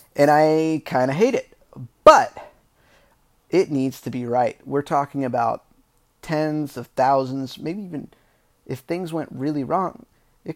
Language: English